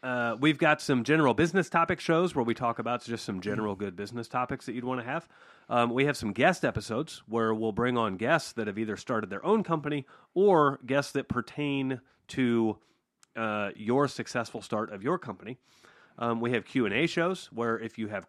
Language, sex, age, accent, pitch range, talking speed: English, male, 30-49, American, 110-145 Hz, 205 wpm